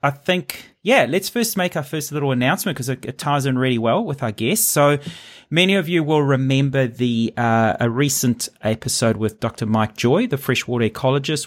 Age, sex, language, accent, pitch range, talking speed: 30-49, male, English, Australian, 125-160 Hz, 195 wpm